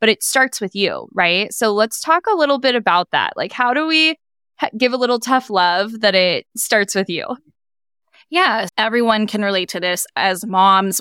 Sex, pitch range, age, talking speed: female, 190-245 Hz, 10-29, 200 wpm